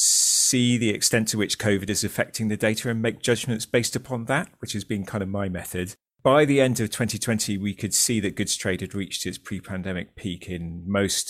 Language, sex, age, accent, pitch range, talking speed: English, male, 30-49, British, 90-115 Hz, 220 wpm